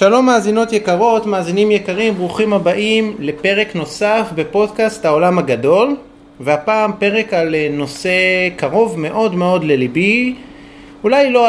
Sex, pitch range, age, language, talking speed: male, 140-205 Hz, 30-49, Hebrew, 115 wpm